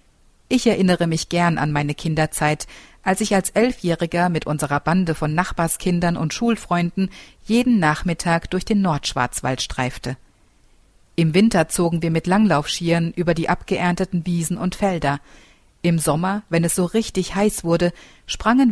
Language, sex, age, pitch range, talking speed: German, female, 50-69, 160-195 Hz, 145 wpm